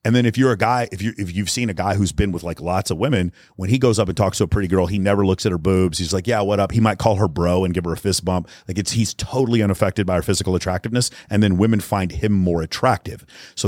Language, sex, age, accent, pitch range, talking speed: English, male, 30-49, American, 95-110 Hz, 305 wpm